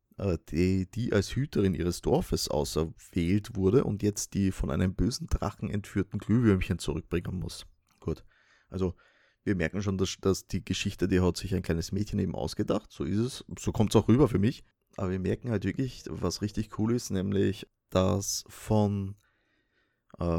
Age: 30-49